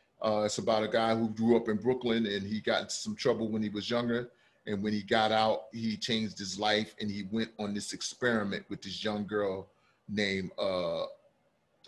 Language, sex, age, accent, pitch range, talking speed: English, male, 30-49, American, 100-120 Hz, 200 wpm